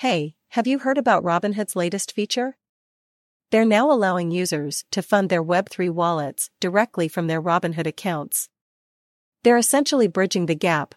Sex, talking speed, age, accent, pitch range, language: female, 150 wpm, 40-59, American, 165-205 Hz, English